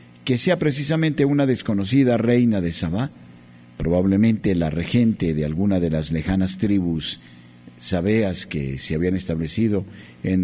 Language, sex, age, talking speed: Spanish, male, 50-69, 130 wpm